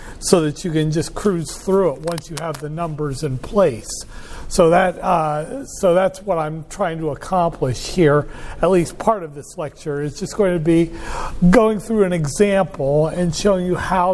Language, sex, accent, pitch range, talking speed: English, male, American, 150-190 Hz, 190 wpm